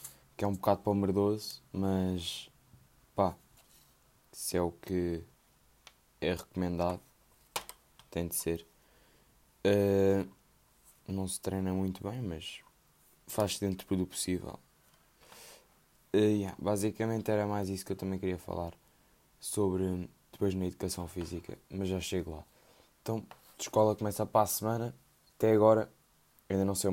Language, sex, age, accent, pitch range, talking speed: Portuguese, male, 10-29, Portuguese, 90-100 Hz, 130 wpm